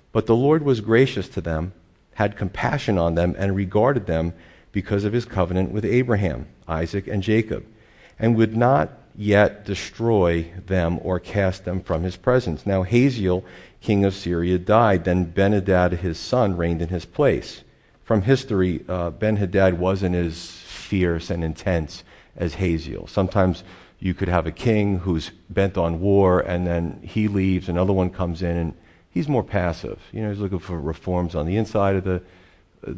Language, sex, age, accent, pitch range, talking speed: English, male, 50-69, American, 90-105 Hz, 170 wpm